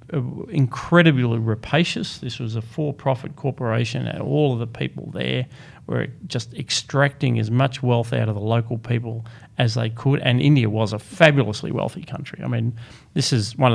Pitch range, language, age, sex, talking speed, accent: 115-135 Hz, English, 40-59, male, 175 wpm, Australian